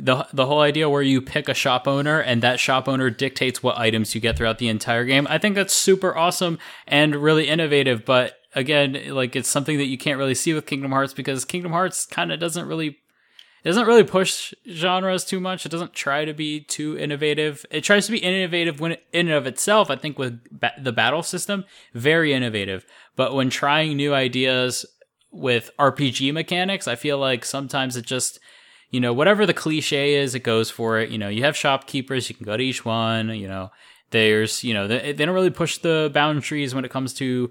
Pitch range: 120-155 Hz